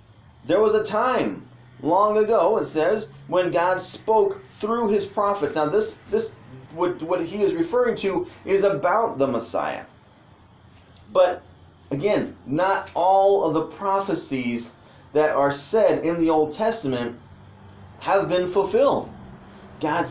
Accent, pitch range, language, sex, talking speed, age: American, 130-205 Hz, English, male, 135 wpm, 30-49